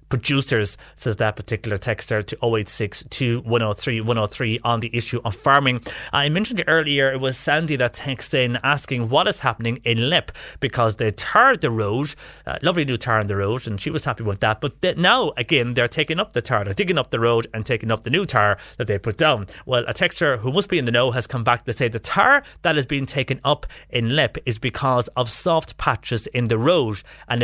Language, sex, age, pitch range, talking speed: English, male, 30-49, 110-135 Hz, 220 wpm